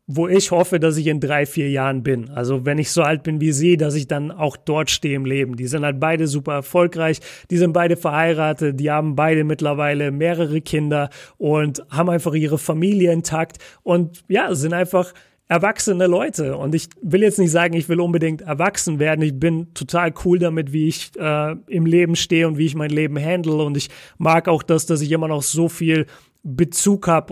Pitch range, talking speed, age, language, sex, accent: 150-175 Hz, 210 wpm, 30-49, German, male, German